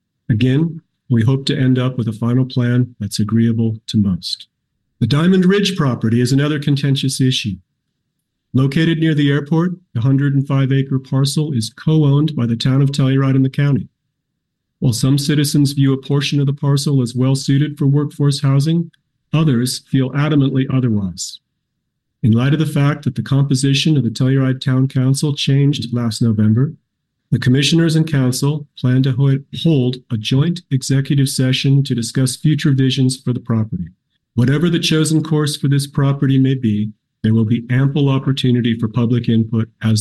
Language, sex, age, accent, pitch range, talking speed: English, male, 40-59, American, 120-145 Hz, 165 wpm